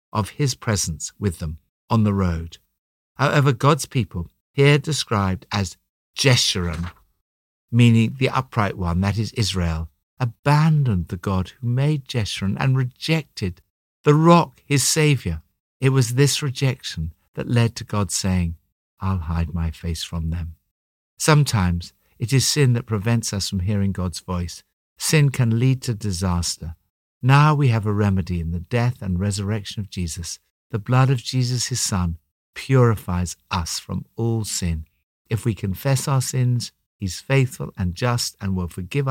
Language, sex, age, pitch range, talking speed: English, male, 60-79, 85-130 Hz, 155 wpm